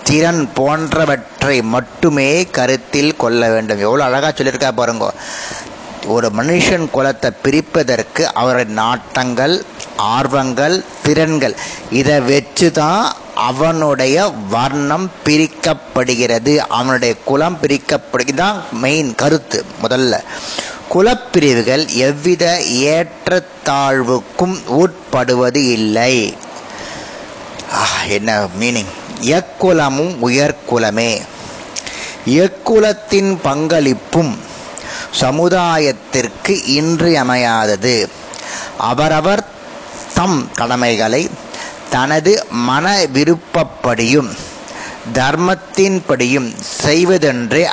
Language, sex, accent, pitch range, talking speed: Tamil, male, native, 125-170 Hz, 65 wpm